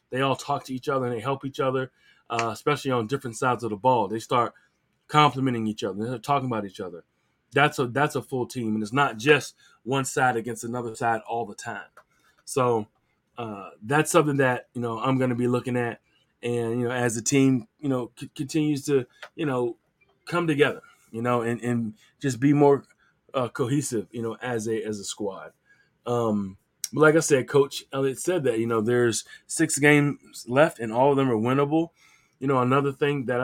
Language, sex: English, male